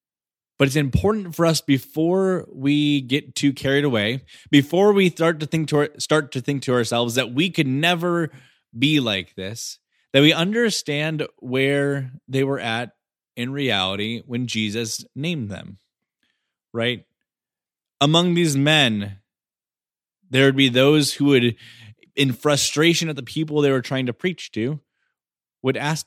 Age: 20-39